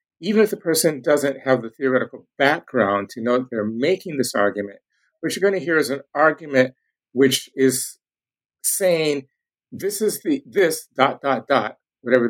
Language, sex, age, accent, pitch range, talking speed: English, male, 50-69, American, 120-175 Hz, 170 wpm